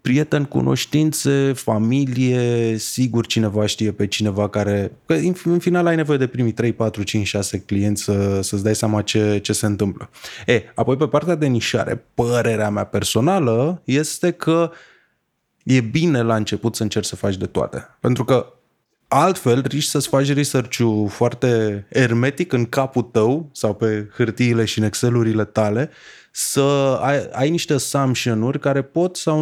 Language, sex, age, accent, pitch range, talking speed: Romanian, male, 20-39, native, 110-150 Hz, 155 wpm